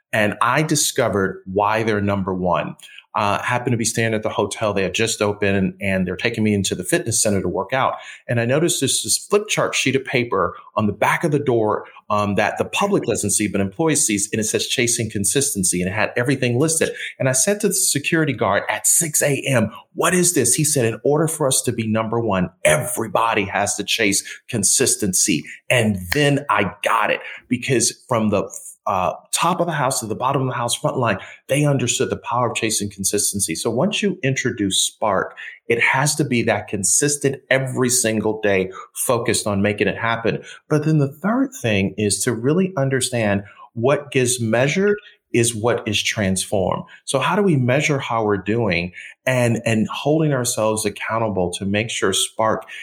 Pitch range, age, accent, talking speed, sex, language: 105-135 Hz, 30-49, American, 195 wpm, male, English